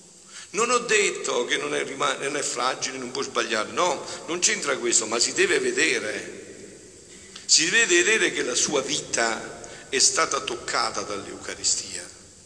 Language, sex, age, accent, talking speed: Italian, male, 50-69, native, 145 wpm